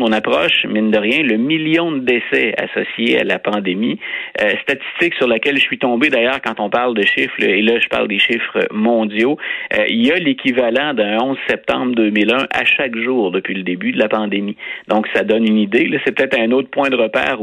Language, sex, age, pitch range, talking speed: French, male, 30-49, 105-135 Hz, 220 wpm